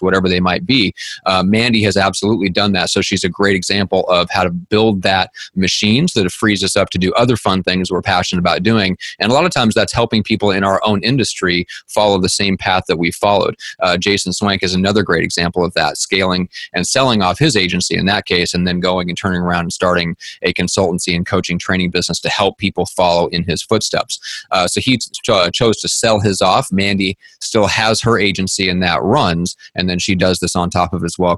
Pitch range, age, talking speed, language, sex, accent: 90-105 Hz, 30-49, 230 wpm, English, male, American